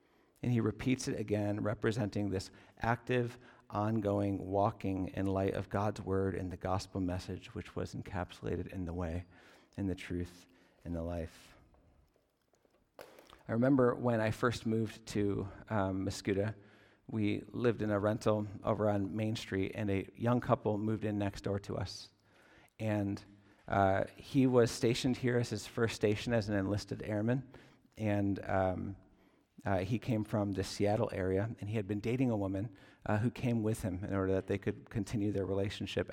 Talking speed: 170 wpm